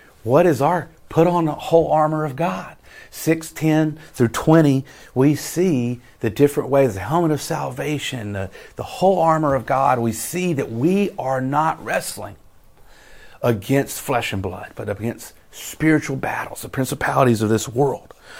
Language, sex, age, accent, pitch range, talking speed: English, male, 50-69, American, 110-160 Hz, 160 wpm